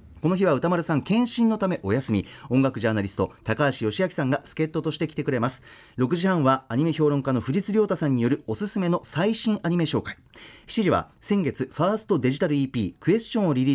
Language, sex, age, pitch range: Japanese, male, 40-59, 120-195 Hz